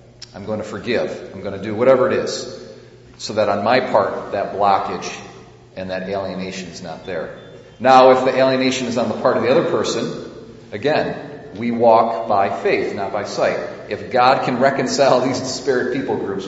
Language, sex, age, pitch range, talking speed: English, male, 40-59, 95-120 Hz, 190 wpm